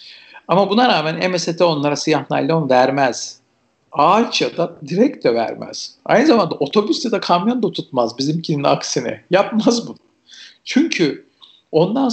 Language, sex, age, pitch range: Turkish, male, 50-69, 135-170 Hz